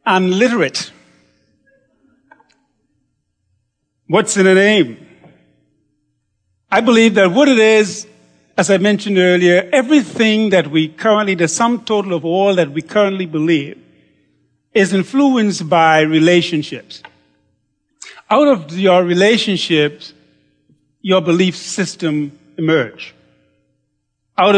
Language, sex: English, male